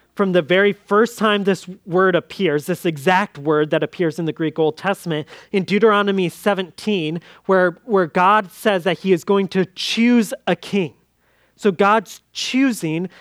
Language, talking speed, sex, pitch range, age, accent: English, 165 wpm, male, 160-205 Hz, 30-49, American